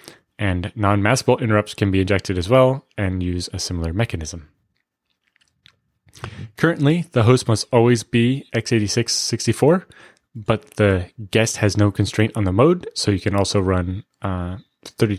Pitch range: 95-115 Hz